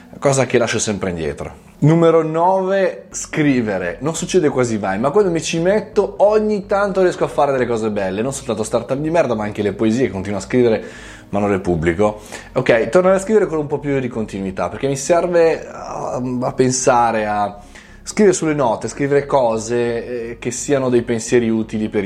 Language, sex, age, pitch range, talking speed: Italian, male, 20-39, 110-150 Hz, 190 wpm